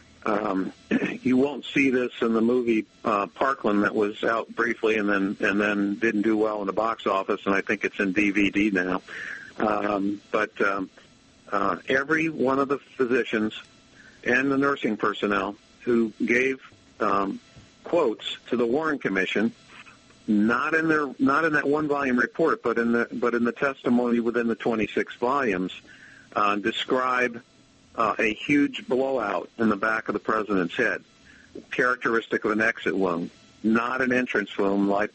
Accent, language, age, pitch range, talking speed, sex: American, English, 50-69, 100-125 Hz, 165 wpm, male